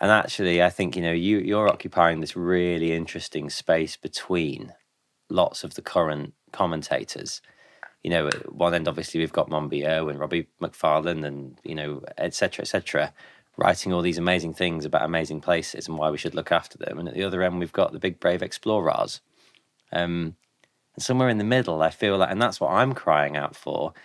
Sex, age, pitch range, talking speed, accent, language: male, 20-39, 80-95 Hz, 210 wpm, British, English